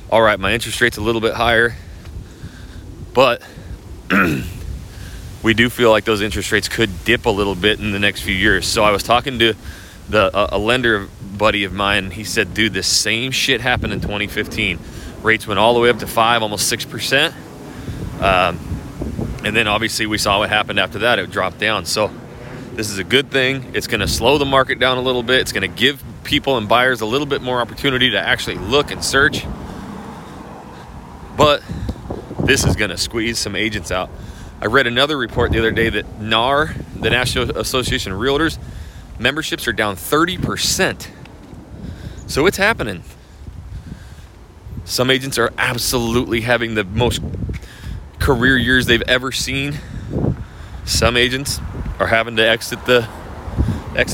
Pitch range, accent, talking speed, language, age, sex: 100-125 Hz, American, 165 wpm, English, 30-49, male